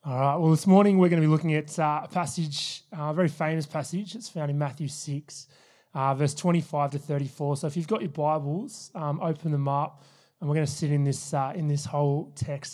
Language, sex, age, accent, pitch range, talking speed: English, male, 30-49, Australian, 145-175 Hz, 225 wpm